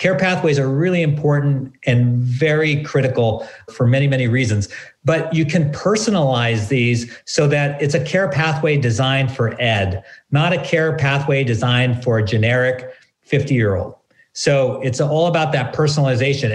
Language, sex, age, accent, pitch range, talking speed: English, male, 50-69, American, 120-145 Hz, 150 wpm